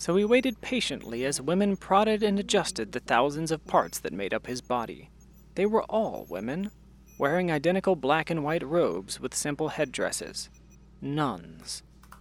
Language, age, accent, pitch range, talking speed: English, 30-49, American, 140-185 Hz, 155 wpm